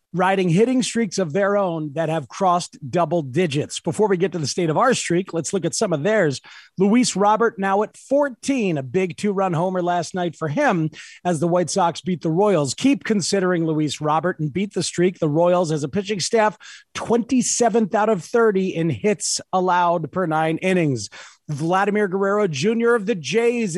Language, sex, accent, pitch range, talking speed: English, male, American, 165-225 Hz, 190 wpm